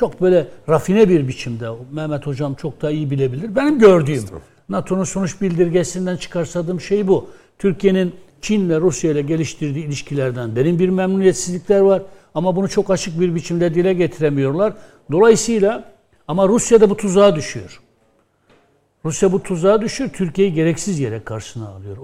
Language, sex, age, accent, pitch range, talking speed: Turkish, male, 60-79, native, 135-180 Hz, 145 wpm